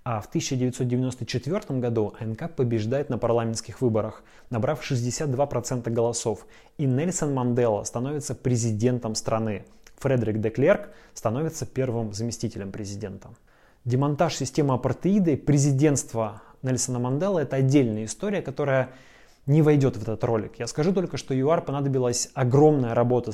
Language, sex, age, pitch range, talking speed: Russian, male, 20-39, 120-145 Hz, 125 wpm